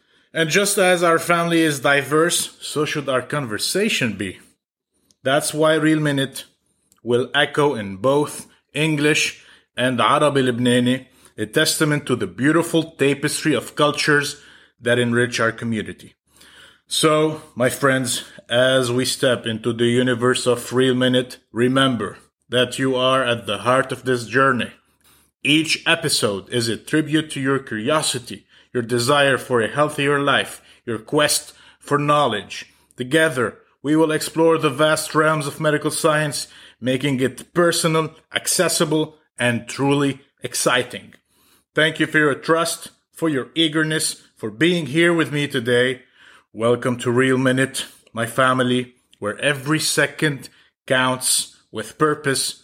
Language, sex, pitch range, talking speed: Arabic, male, 125-155 Hz, 135 wpm